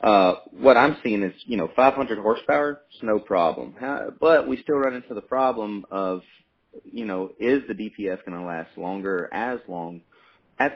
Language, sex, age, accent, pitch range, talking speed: English, male, 30-49, American, 90-110 Hz, 185 wpm